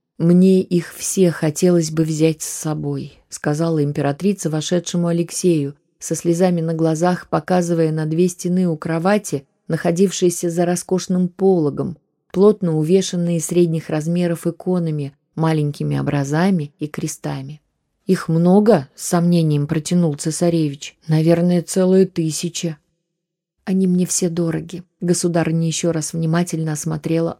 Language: Russian